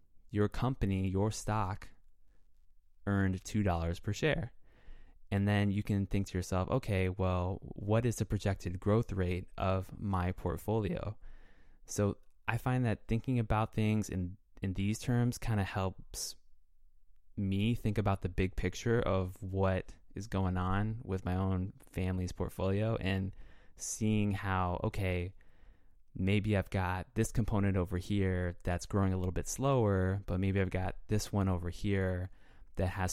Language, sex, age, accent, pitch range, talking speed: English, male, 20-39, American, 90-105 Hz, 150 wpm